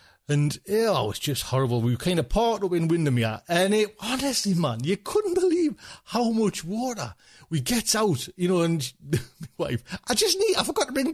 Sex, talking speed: male, 210 wpm